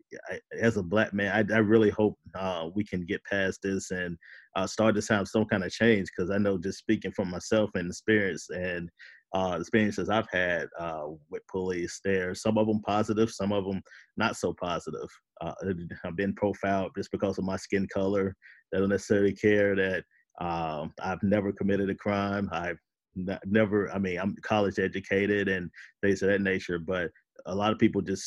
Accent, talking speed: American, 190 wpm